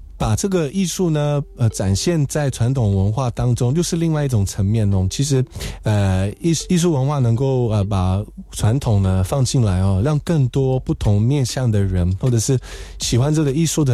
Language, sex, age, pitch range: Chinese, male, 20-39, 100-140 Hz